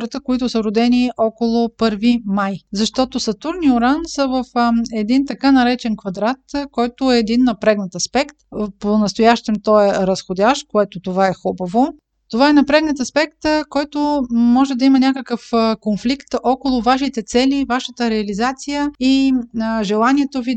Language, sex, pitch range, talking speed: Bulgarian, female, 210-255 Hz, 140 wpm